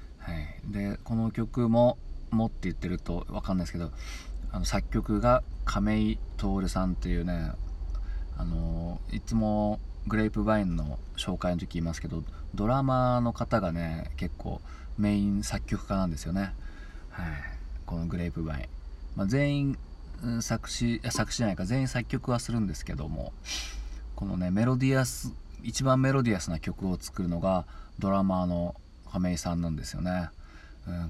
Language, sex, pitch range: Japanese, male, 80-105 Hz